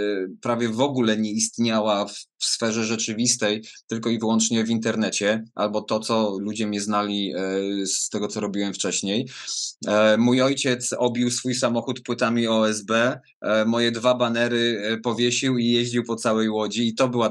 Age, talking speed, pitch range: 20-39, 155 wpm, 105-120 Hz